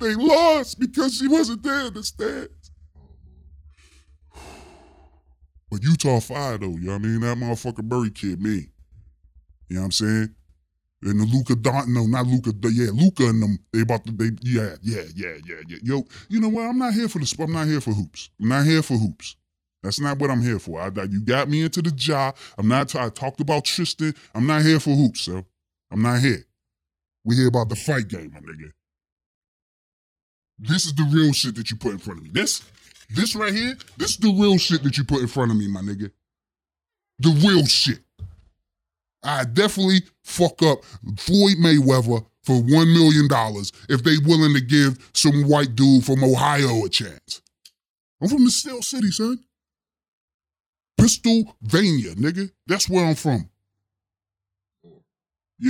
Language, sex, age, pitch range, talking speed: English, female, 20-39, 95-160 Hz, 185 wpm